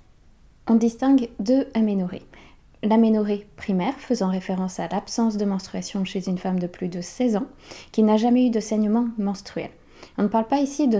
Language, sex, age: French, female, 20-39